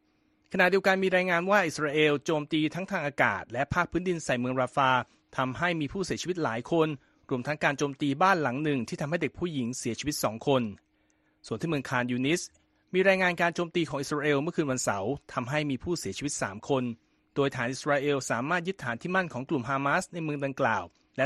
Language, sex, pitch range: Thai, male, 130-175 Hz